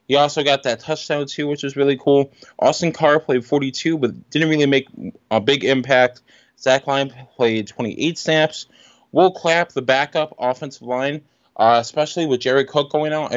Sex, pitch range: male, 120-150 Hz